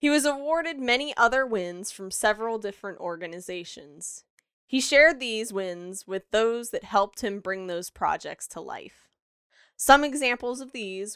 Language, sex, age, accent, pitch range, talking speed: English, female, 10-29, American, 180-235 Hz, 150 wpm